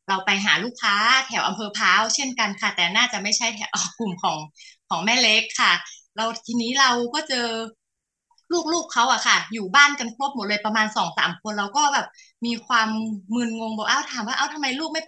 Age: 20-39